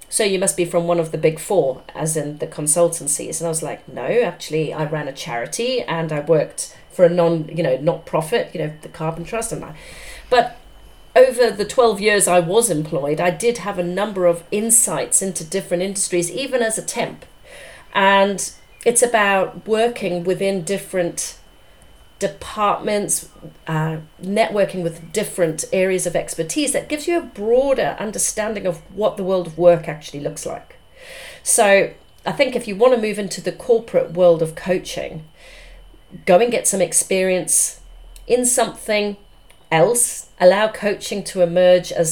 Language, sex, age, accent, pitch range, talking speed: English, female, 40-59, British, 165-205 Hz, 170 wpm